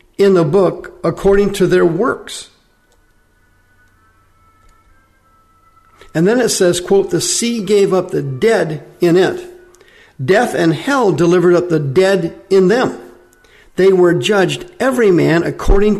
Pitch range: 155-195 Hz